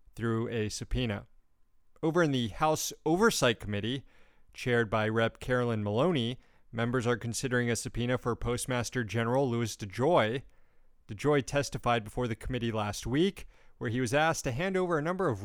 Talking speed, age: 160 wpm, 30-49